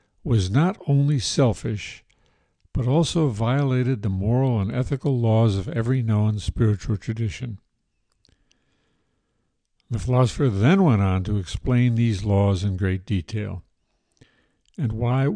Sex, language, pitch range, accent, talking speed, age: male, English, 105-130 Hz, American, 120 wpm, 60-79